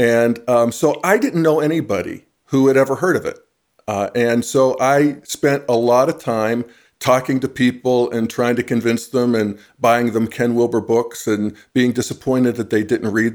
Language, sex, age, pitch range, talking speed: English, male, 50-69, 110-140 Hz, 195 wpm